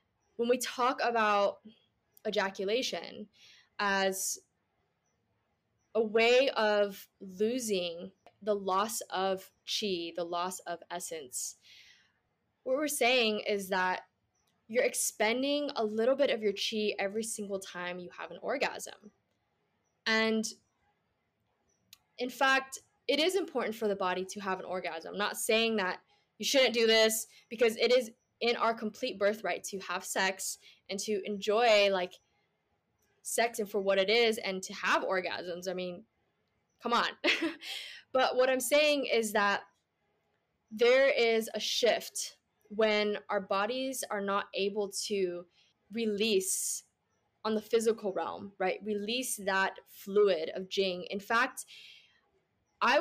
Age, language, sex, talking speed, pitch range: 10-29, English, female, 130 wpm, 195-235 Hz